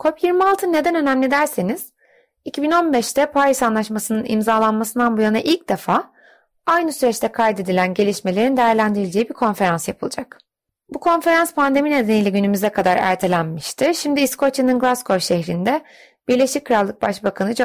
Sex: female